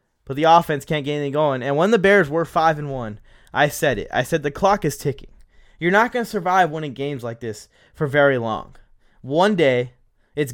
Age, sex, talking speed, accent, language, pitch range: 20-39, male, 220 wpm, American, English, 115-150 Hz